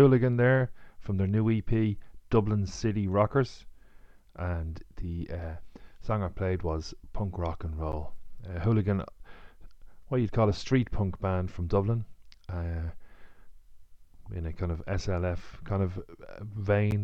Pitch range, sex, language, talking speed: 90-105 Hz, male, English, 140 wpm